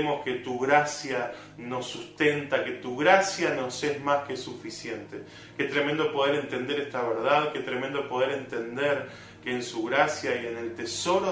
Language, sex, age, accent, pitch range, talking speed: Spanish, male, 20-39, Argentinian, 125-150 Hz, 165 wpm